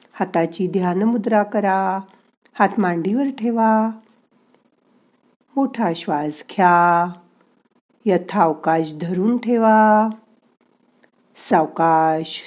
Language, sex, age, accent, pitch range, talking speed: Marathi, female, 50-69, native, 190-240 Hz, 65 wpm